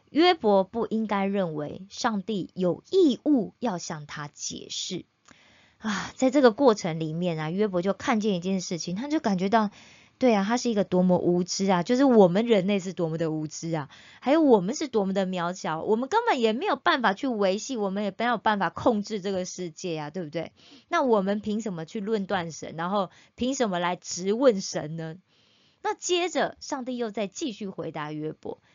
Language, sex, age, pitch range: Korean, female, 20-39, 180-245 Hz